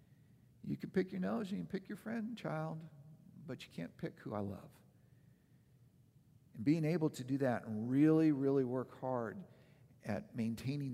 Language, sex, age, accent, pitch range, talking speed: English, male, 50-69, American, 125-180 Hz, 175 wpm